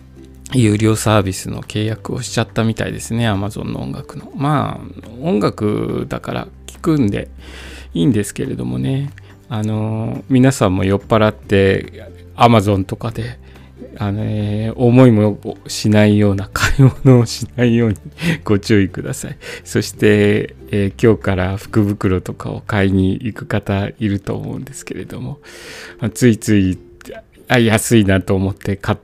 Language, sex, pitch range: Japanese, male, 95-120 Hz